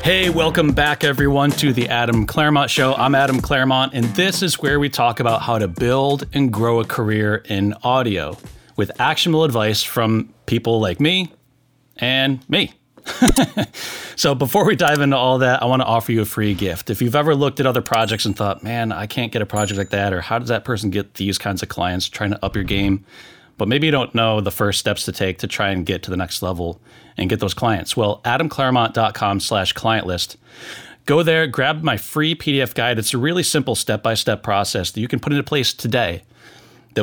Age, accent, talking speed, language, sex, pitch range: 30-49, American, 215 wpm, English, male, 105-140 Hz